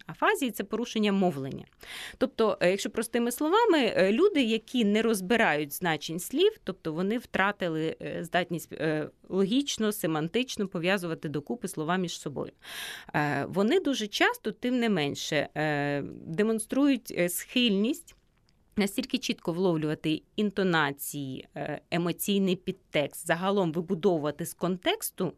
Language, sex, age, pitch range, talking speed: Ukrainian, female, 20-39, 170-240 Hz, 105 wpm